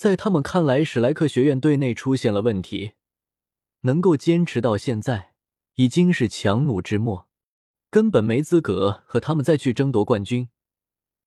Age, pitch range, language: 20-39, 105-155 Hz, Chinese